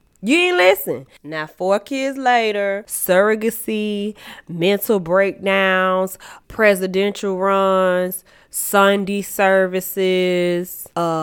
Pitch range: 195-285 Hz